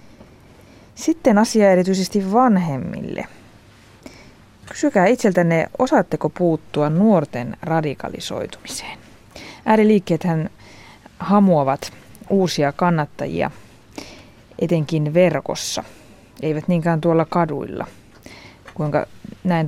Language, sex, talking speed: Finnish, female, 65 wpm